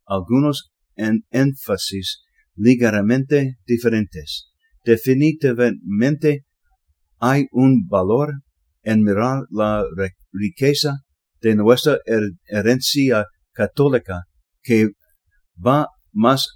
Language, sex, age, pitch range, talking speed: English, male, 50-69, 100-135 Hz, 75 wpm